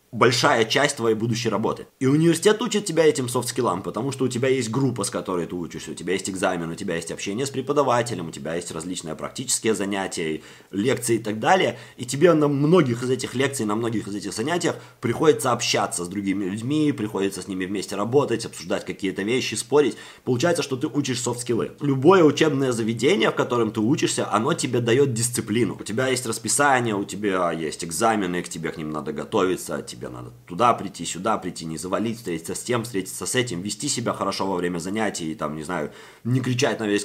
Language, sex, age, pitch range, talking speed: Russian, male, 20-39, 100-135 Hz, 200 wpm